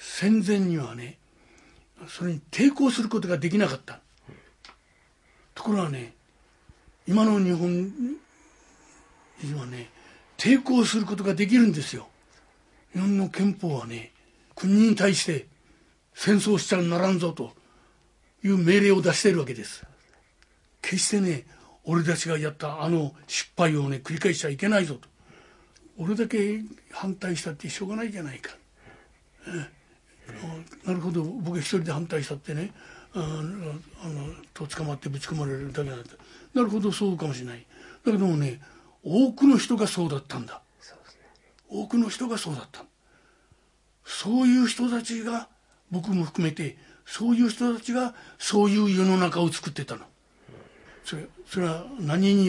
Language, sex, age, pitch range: Japanese, male, 60-79, 155-205 Hz